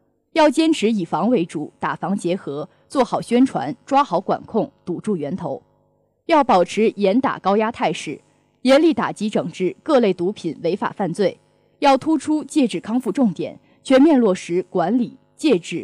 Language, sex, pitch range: Chinese, female, 185-270 Hz